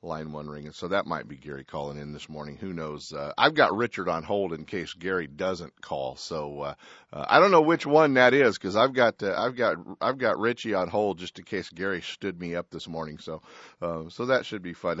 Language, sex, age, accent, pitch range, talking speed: English, male, 40-59, American, 90-135 Hz, 250 wpm